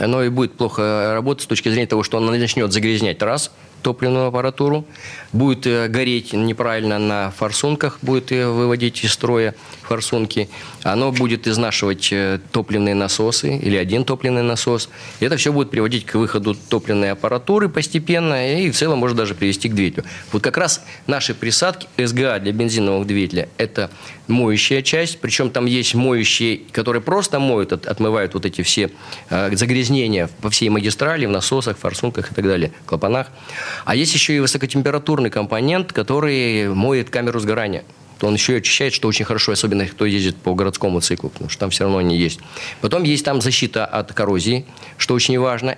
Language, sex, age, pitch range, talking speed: Russian, male, 20-39, 105-130 Hz, 165 wpm